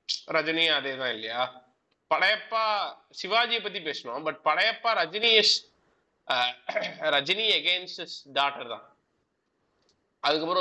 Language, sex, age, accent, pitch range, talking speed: Tamil, male, 20-39, native, 125-190 Hz, 55 wpm